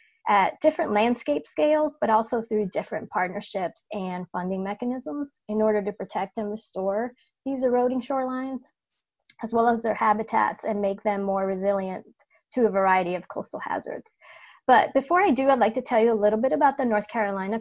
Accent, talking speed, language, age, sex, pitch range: American, 180 wpm, English, 30-49, female, 200-245 Hz